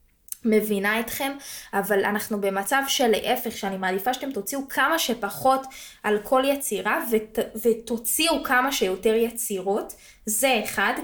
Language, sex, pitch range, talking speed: Hebrew, female, 205-260 Hz, 120 wpm